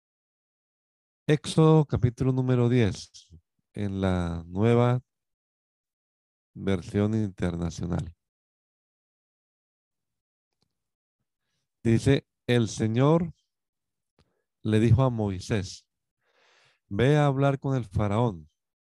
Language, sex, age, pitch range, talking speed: Spanish, male, 50-69, 95-125 Hz, 70 wpm